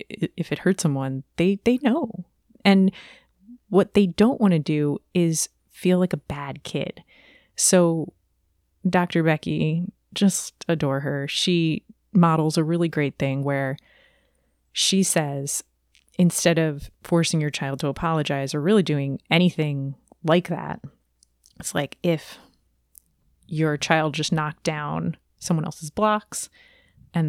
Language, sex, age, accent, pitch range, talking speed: English, female, 30-49, American, 140-180 Hz, 130 wpm